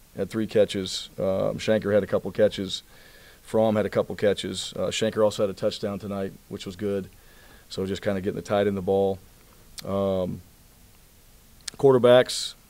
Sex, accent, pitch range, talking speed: male, American, 95-110 Hz, 175 wpm